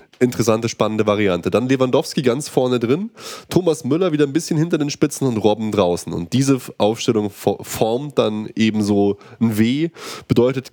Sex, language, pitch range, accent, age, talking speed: male, German, 105-130 Hz, German, 20-39, 160 wpm